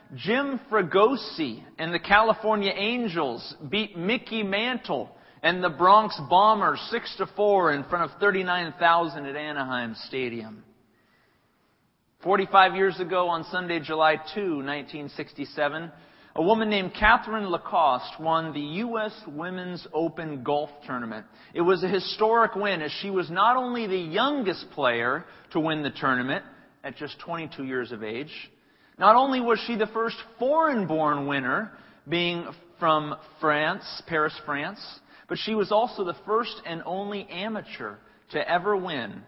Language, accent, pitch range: English, American, 155-210 Hz